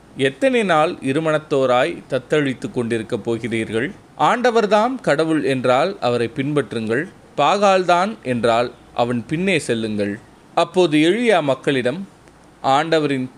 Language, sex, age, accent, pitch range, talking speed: Tamil, male, 30-49, native, 120-160 Hz, 90 wpm